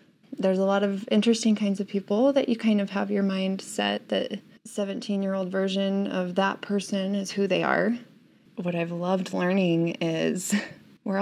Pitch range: 170-210 Hz